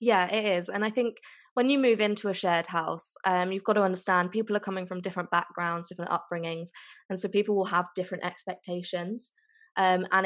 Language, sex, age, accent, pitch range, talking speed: English, female, 20-39, British, 170-200 Hz, 205 wpm